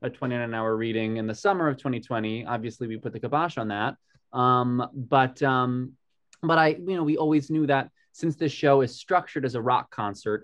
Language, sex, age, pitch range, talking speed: English, male, 20-39, 110-140 Hz, 200 wpm